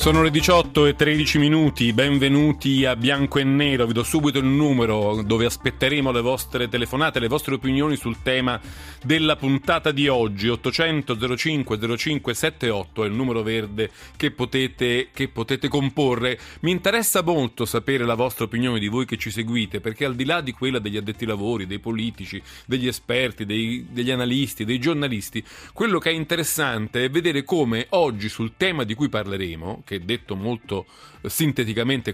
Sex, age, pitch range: male, 40-59, 115-145 Hz